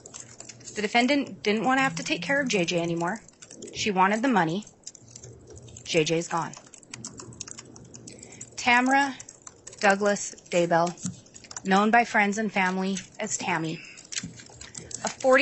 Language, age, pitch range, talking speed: English, 30-49, 165-225 Hz, 115 wpm